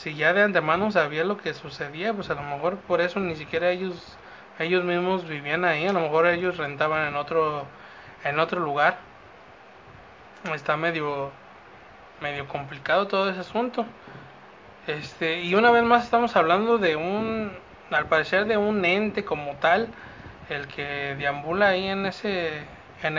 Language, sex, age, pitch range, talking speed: Spanish, male, 20-39, 150-190 Hz, 160 wpm